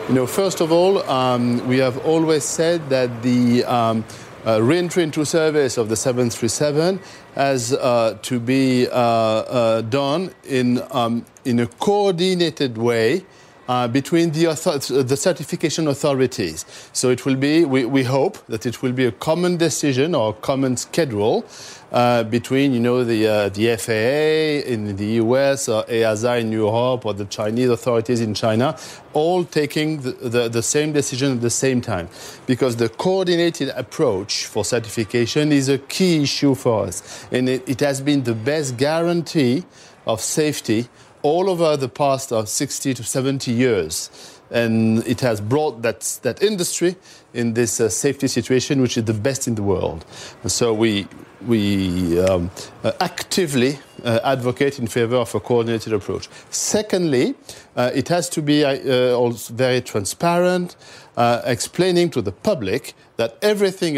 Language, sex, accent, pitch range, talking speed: English, male, French, 115-150 Hz, 160 wpm